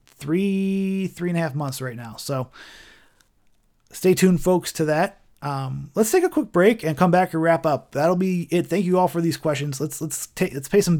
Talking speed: 225 wpm